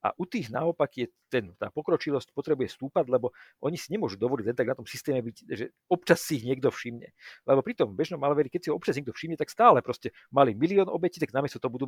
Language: Slovak